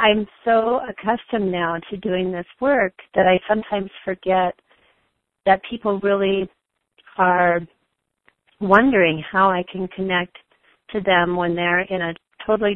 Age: 40-59